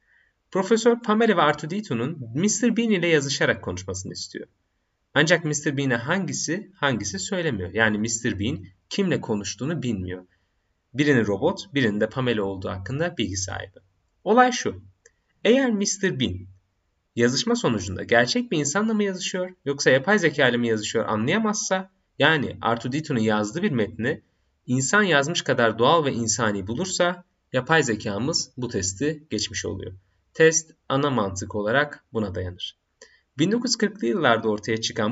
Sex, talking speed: male, 130 wpm